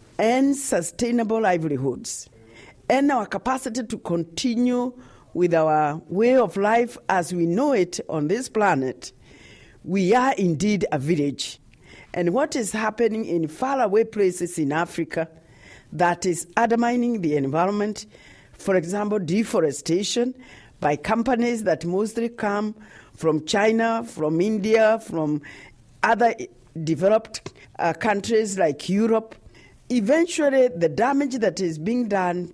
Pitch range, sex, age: 160-230 Hz, female, 50-69